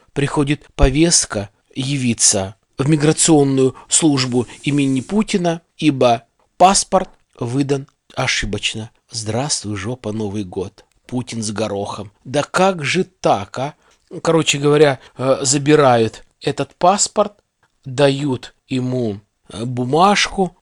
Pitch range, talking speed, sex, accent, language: 120-160 Hz, 95 wpm, male, native, Russian